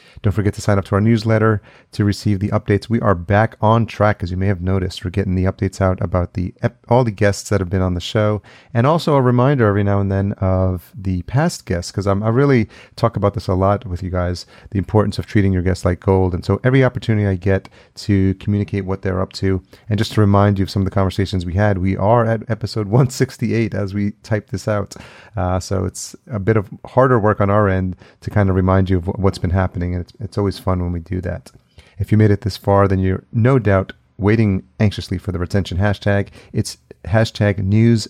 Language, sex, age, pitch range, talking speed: English, male, 30-49, 95-110 Hz, 240 wpm